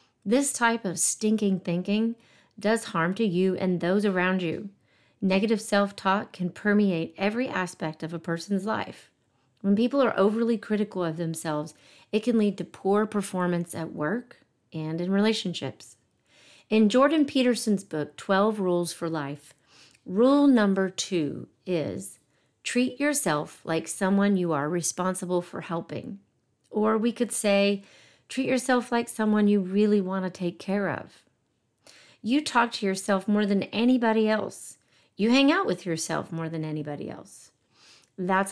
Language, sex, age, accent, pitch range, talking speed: English, female, 40-59, American, 175-215 Hz, 150 wpm